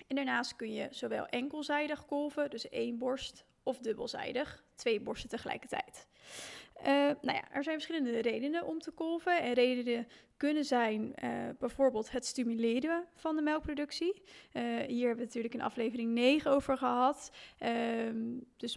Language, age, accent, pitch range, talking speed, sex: Dutch, 20-39, Dutch, 240-290 Hz, 140 wpm, female